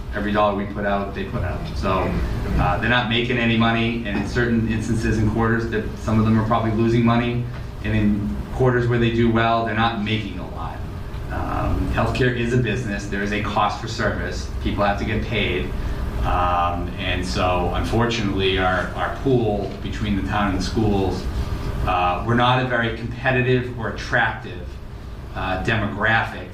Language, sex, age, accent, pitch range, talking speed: English, male, 30-49, American, 100-120 Hz, 180 wpm